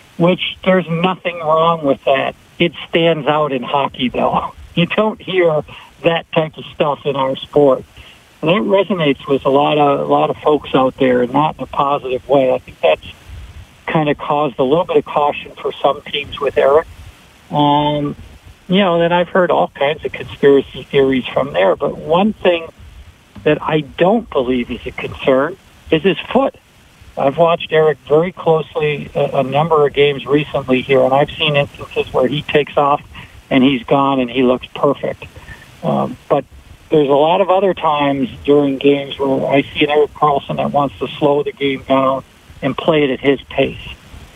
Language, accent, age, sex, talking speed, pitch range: English, American, 60-79, male, 185 wpm, 130-155 Hz